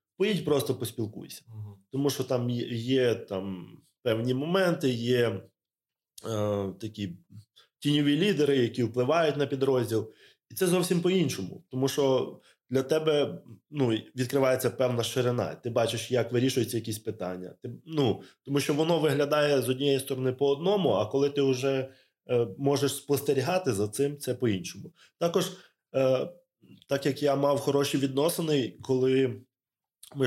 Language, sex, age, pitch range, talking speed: Ukrainian, male, 20-39, 115-140 Hz, 135 wpm